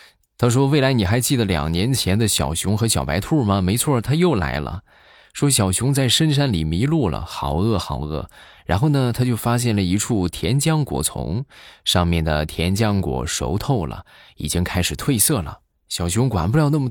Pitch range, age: 85-130 Hz, 20-39